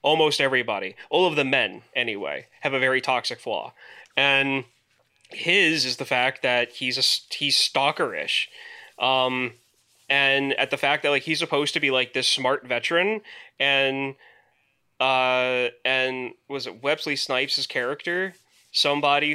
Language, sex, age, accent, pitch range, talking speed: English, male, 20-39, American, 130-160 Hz, 145 wpm